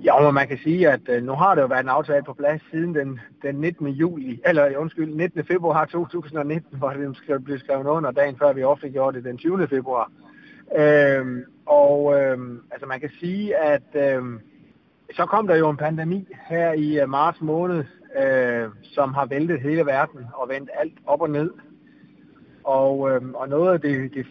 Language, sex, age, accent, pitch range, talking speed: Danish, male, 30-49, native, 140-175 Hz, 190 wpm